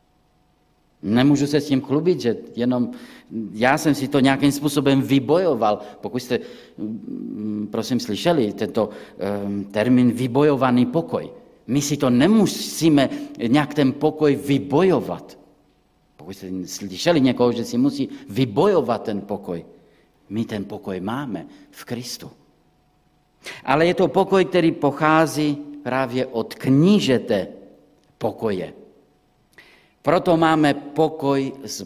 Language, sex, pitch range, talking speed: Czech, male, 110-155 Hz, 115 wpm